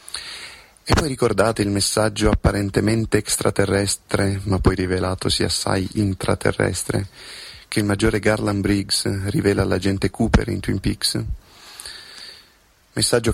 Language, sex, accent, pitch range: Italian, male, native, 95-110 Hz